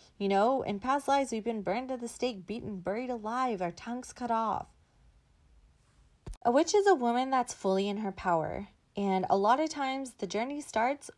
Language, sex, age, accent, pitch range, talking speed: English, female, 20-39, American, 195-265 Hz, 195 wpm